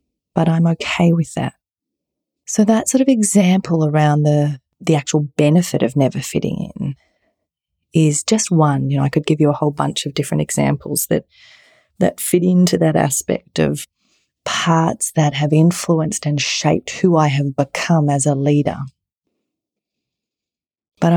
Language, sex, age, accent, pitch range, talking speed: English, female, 30-49, Australian, 145-175 Hz, 155 wpm